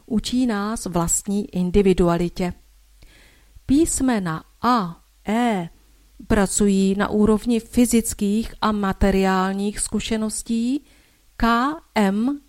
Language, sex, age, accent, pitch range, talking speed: Czech, female, 40-59, native, 190-235 Hz, 75 wpm